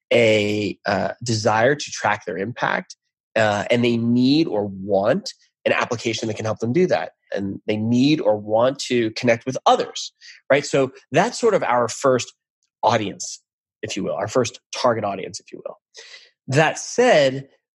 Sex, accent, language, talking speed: male, American, English, 170 wpm